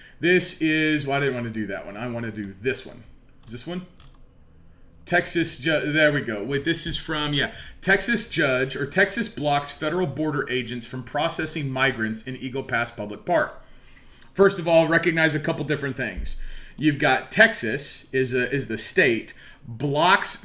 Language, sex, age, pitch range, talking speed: English, male, 30-49, 135-175 Hz, 175 wpm